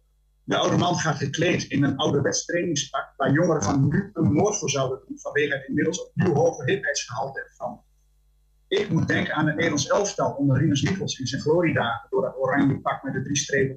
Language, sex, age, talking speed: Dutch, male, 50-69, 200 wpm